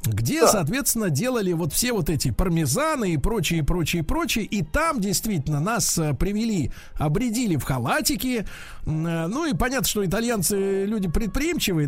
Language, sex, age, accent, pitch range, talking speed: Russian, male, 50-69, native, 155-215 Hz, 135 wpm